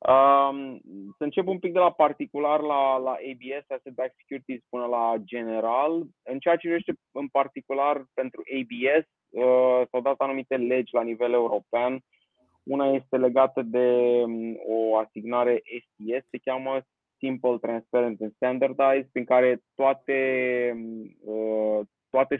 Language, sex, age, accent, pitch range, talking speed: Romanian, male, 20-39, native, 115-130 Hz, 125 wpm